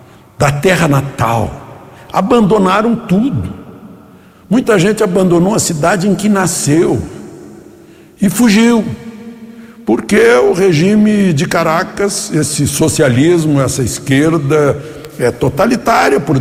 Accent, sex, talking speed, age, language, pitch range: Brazilian, male, 100 wpm, 60-79, Portuguese, 130-185 Hz